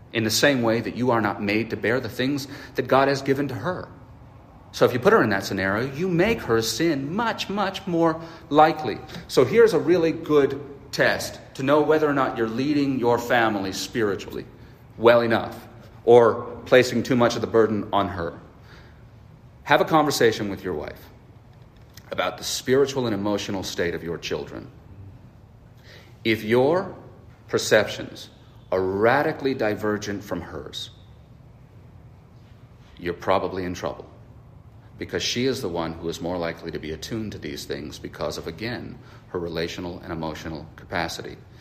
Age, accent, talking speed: 40-59, American, 160 wpm